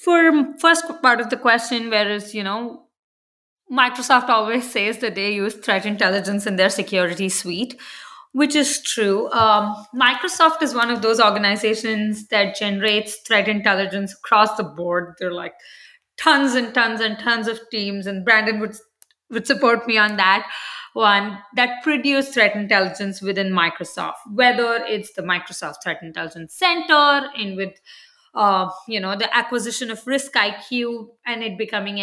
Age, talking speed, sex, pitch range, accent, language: 20-39, 155 wpm, female, 200-250 Hz, Indian, English